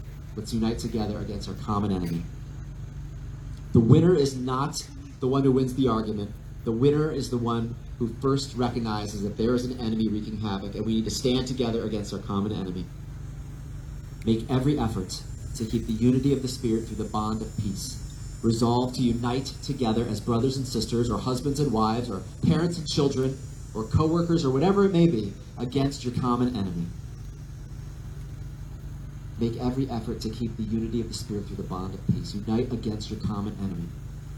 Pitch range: 110-135 Hz